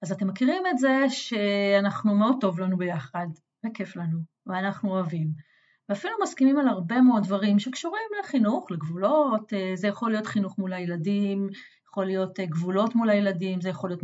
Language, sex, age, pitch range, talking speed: Hebrew, female, 30-49, 200-270 Hz, 160 wpm